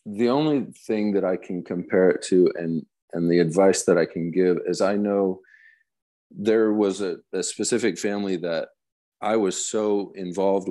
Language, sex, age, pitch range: English, male, 40-59, 90-110 Hz